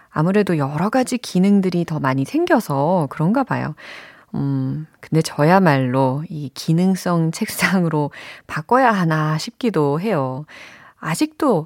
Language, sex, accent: Korean, female, native